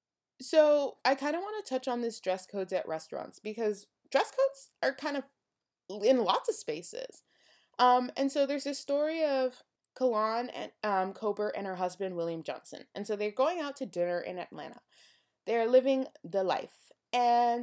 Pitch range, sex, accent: 190-260 Hz, female, American